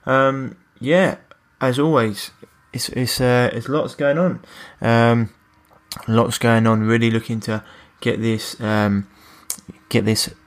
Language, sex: English, male